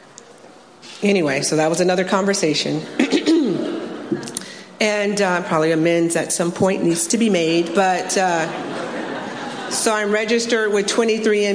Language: English